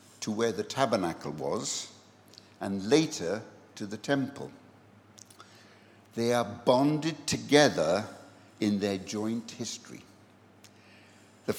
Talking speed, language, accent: 100 wpm, English, British